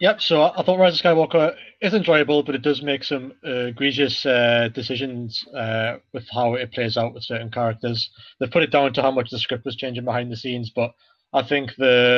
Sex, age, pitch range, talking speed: male, 20-39, 120-145 Hz, 220 wpm